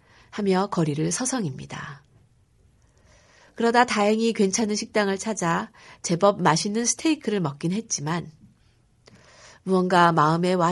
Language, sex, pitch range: Korean, female, 150-210 Hz